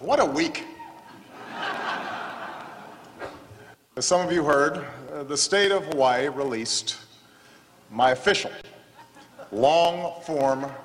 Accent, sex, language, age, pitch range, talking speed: American, male, English, 50-69, 145-195 Hz, 90 wpm